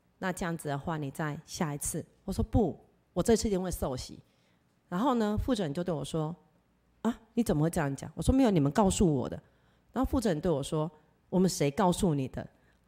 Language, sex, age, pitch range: Chinese, female, 30-49, 135-180 Hz